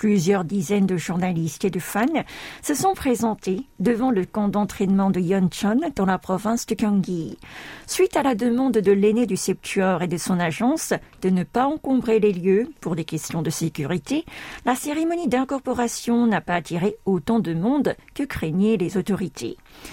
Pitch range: 190-245 Hz